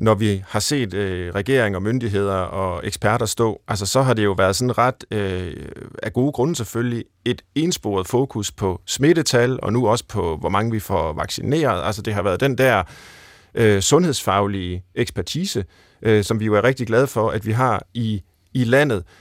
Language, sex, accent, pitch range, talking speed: Danish, male, native, 100-125 Hz, 190 wpm